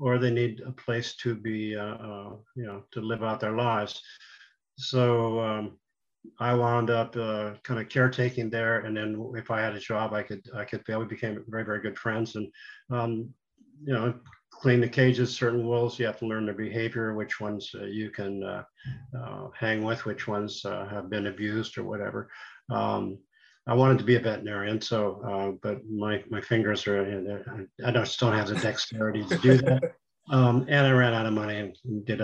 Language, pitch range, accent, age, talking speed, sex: English, 110-125 Hz, American, 50-69, 200 wpm, male